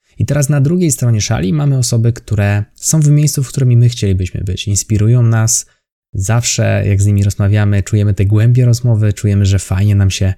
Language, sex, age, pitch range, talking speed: Polish, male, 20-39, 100-120 Hz, 190 wpm